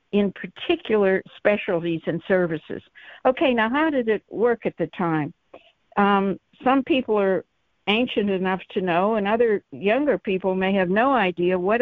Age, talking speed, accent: 60-79, 155 wpm, American